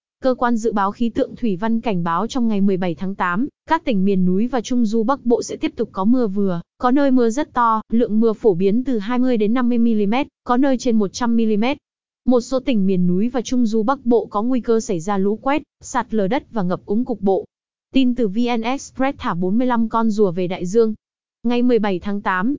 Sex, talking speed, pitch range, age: female, 235 wpm, 200-250 Hz, 20-39